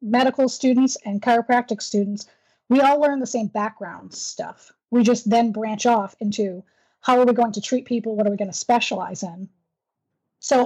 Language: English